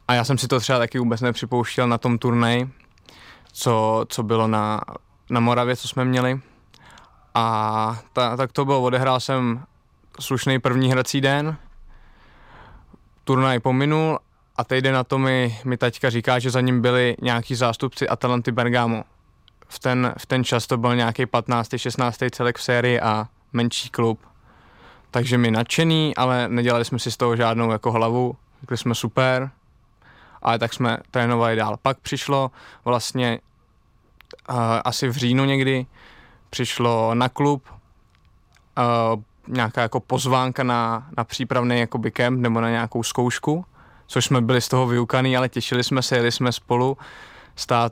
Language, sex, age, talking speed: Czech, male, 20-39, 155 wpm